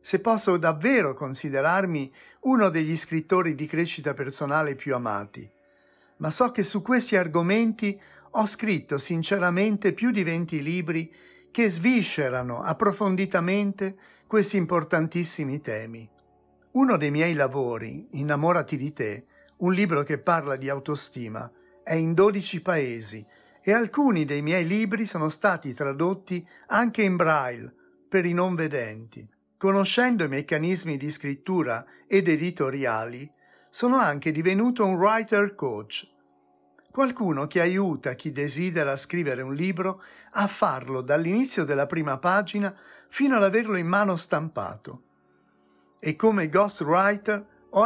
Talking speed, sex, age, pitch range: 125 wpm, male, 50-69, 140-200 Hz